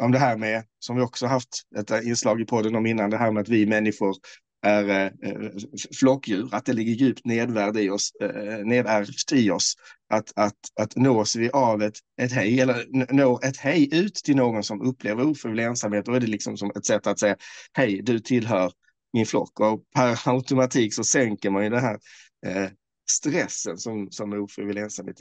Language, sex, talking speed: Swedish, male, 190 wpm